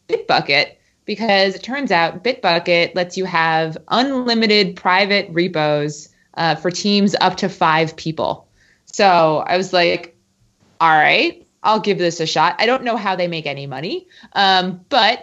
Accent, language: American, English